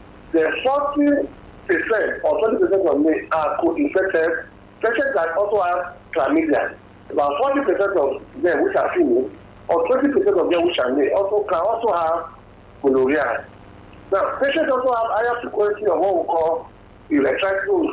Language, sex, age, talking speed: English, male, 50-69, 155 wpm